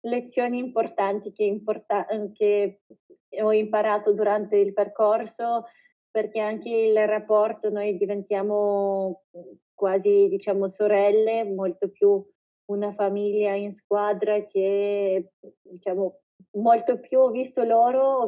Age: 20-39